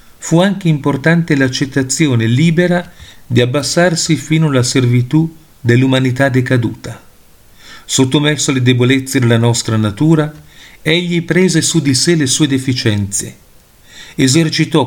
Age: 40-59